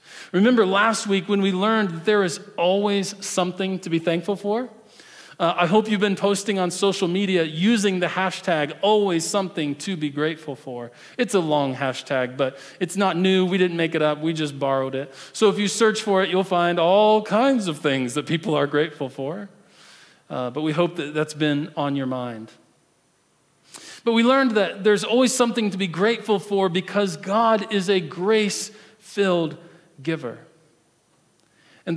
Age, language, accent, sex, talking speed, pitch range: 40-59, English, American, male, 180 wpm, 155-200 Hz